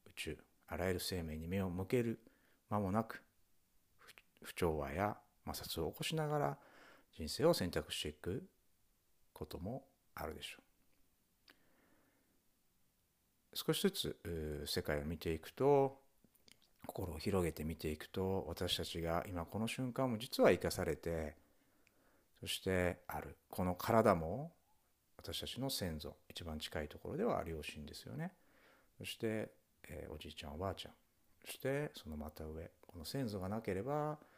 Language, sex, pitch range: Japanese, male, 80-110 Hz